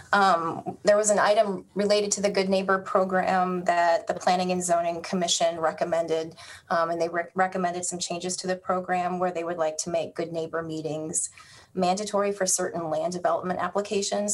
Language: English